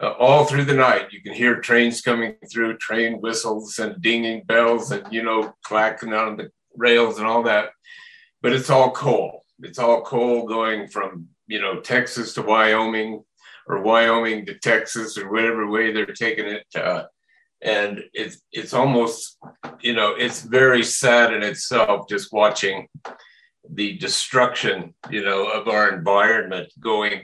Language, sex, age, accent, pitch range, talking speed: English, male, 50-69, American, 110-125 Hz, 160 wpm